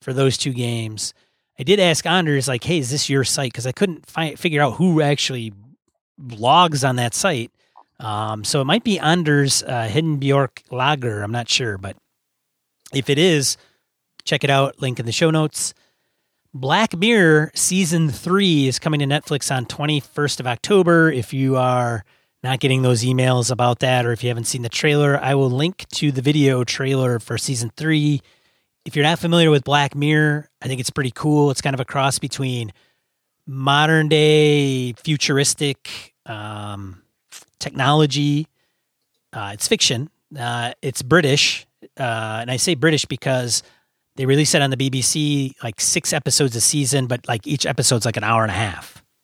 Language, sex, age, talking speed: English, male, 30-49, 175 wpm